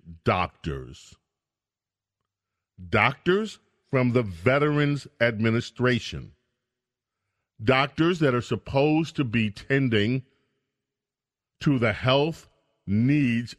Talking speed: 75 wpm